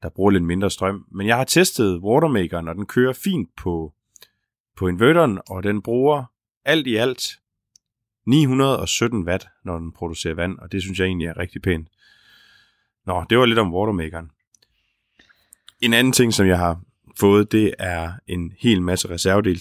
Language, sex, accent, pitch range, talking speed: Danish, male, native, 85-110 Hz, 170 wpm